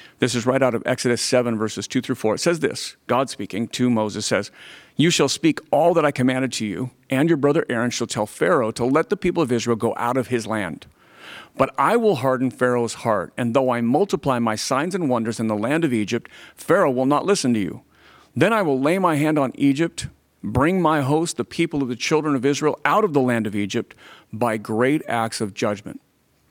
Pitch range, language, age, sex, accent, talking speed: 120-155 Hz, English, 50-69, male, American, 225 wpm